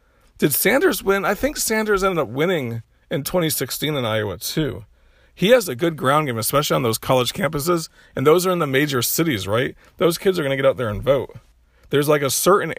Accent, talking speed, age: American, 220 wpm, 40-59